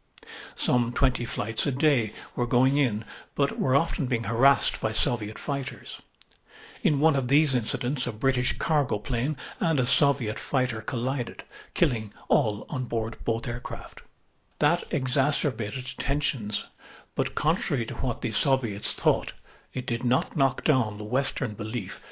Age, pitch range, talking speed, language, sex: 60-79, 115-140 Hz, 145 wpm, English, male